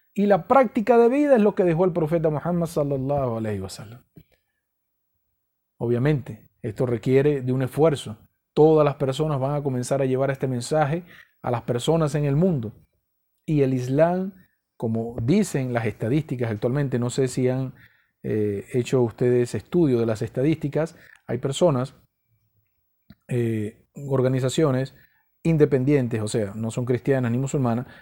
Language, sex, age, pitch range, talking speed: Spanish, male, 40-59, 120-160 Hz, 145 wpm